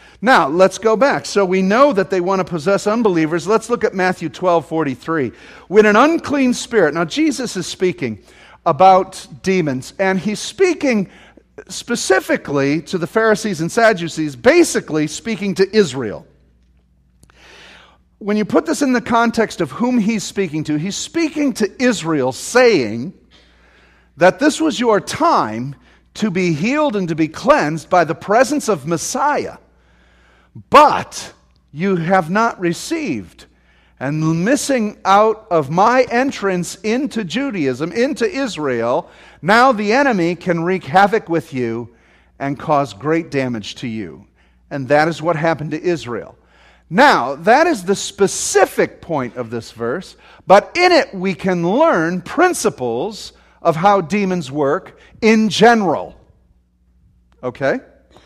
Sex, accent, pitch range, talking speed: male, American, 145-220 Hz, 140 wpm